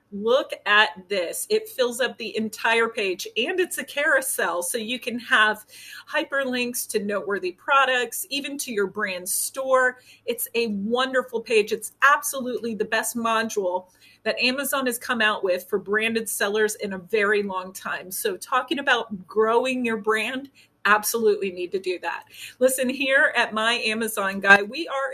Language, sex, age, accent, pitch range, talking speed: English, female, 30-49, American, 205-275 Hz, 160 wpm